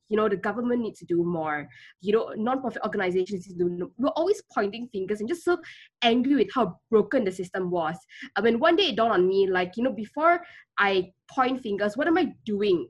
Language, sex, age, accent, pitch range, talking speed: English, female, 20-39, Malaysian, 190-265 Hz, 225 wpm